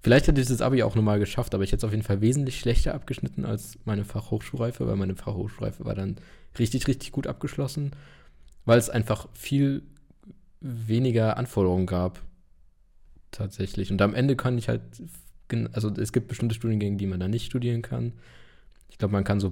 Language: German